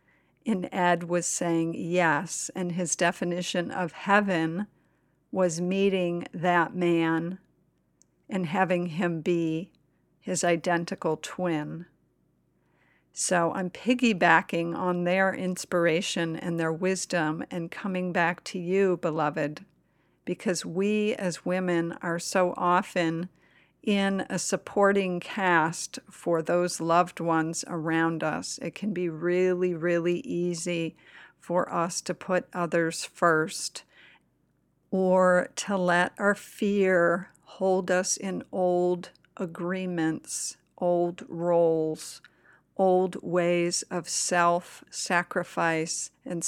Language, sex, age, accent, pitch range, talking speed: English, female, 50-69, American, 170-185 Hz, 105 wpm